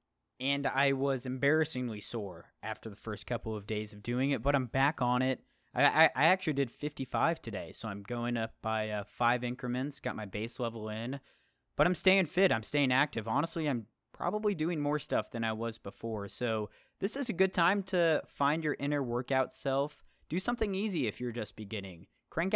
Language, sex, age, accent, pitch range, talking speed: English, male, 20-39, American, 110-150 Hz, 200 wpm